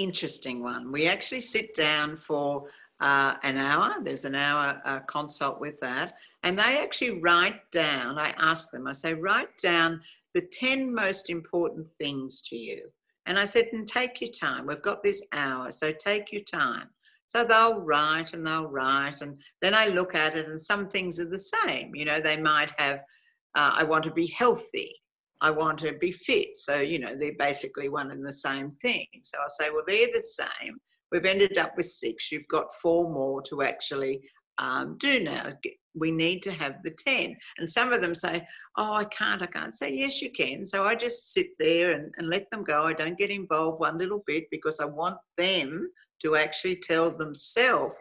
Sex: female